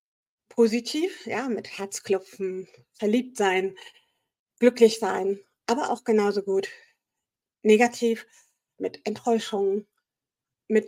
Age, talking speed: 50-69, 90 wpm